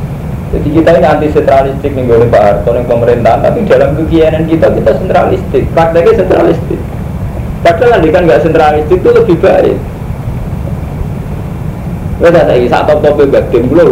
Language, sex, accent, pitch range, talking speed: Indonesian, male, native, 125-180 Hz, 130 wpm